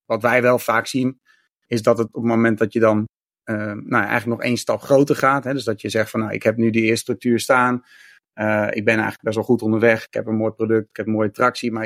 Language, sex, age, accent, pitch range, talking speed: Dutch, male, 30-49, Dutch, 110-120 Hz, 285 wpm